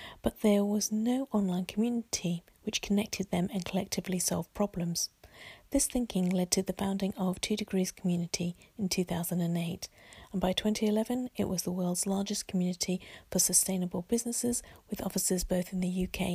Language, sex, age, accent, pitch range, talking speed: English, female, 40-59, British, 180-210 Hz, 160 wpm